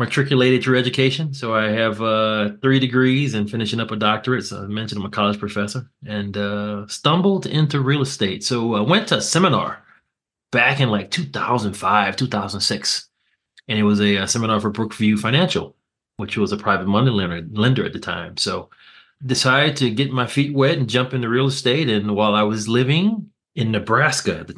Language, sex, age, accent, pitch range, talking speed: English, male, 30-49, American, 105-130 Hz, 195 wpm